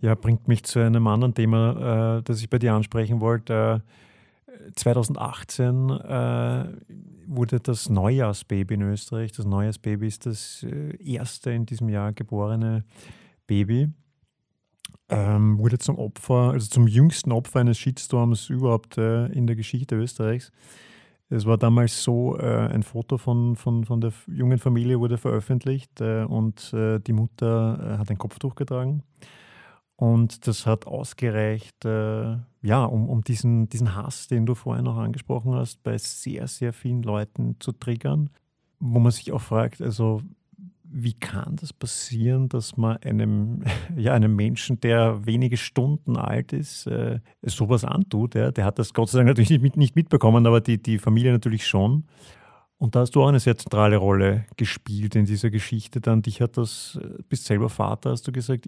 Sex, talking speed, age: male, 155 wpm, 30-49